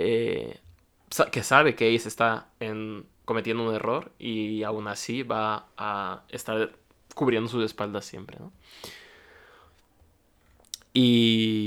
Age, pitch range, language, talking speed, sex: 20-39, 105-120 Hz, Spanish, 115 wpm, male